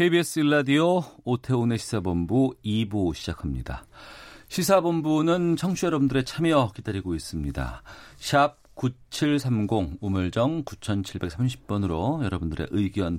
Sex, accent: male, native